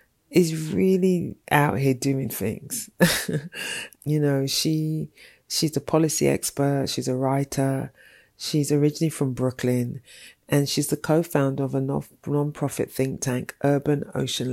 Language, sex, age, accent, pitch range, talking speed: English, female, 30-49, British, 130-150 Hz, 130 wpm